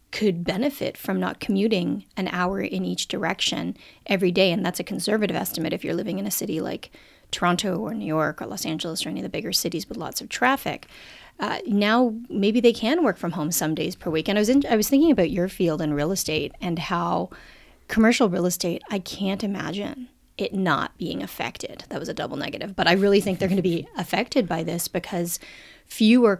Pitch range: 165-205 Hz